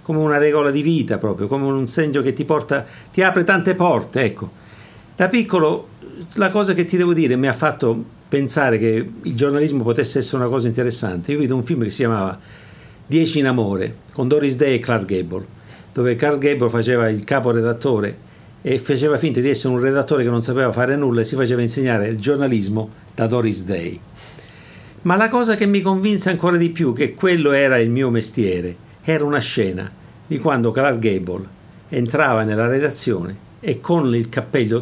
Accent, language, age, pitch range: native, Italian, 50-69, 115-155 Hz